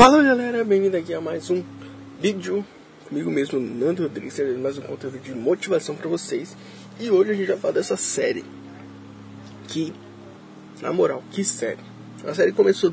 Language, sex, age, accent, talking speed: Portuguese, male, 20-39, Brazilian, 165 wpm